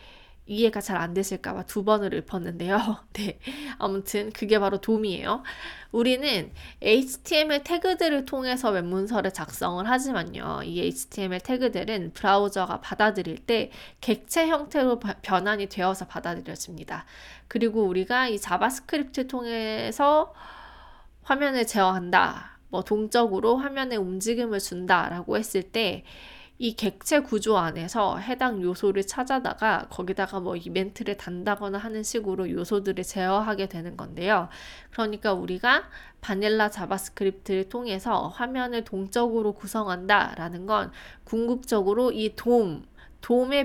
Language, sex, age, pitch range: Korean, female, 20-39, 185-235 Hz